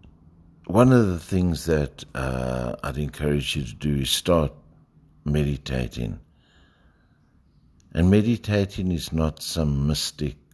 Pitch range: 70-85 Hz